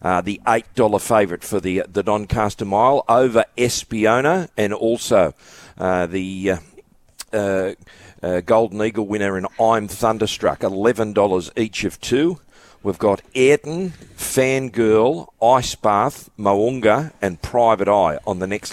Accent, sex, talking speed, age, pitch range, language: Australian, male, 125 wpm, 50-69, 95-115 Hz, English